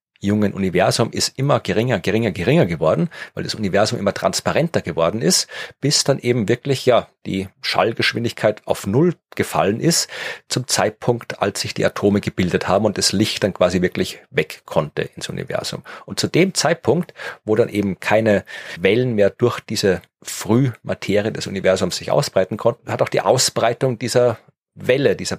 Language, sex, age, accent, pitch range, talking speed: German, male, 40-59, German, 100-130 Hz, 165 wpm